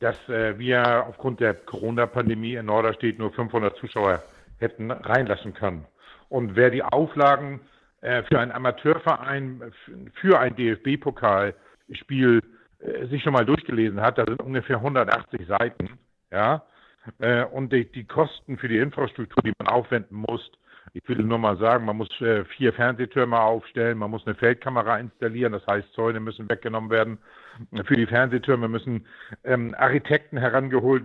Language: German